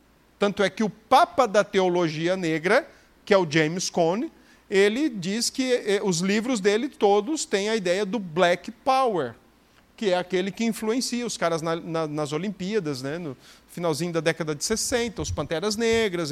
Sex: male